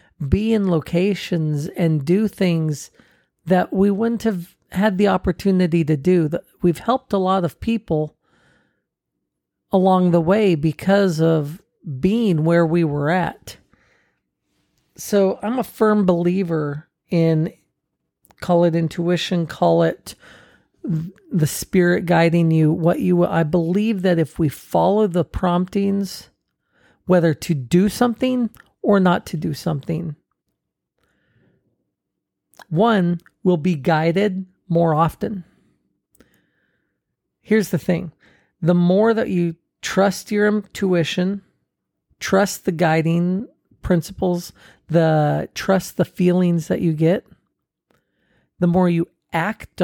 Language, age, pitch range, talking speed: English, 40-59, 165-195 Hz, 115 wpm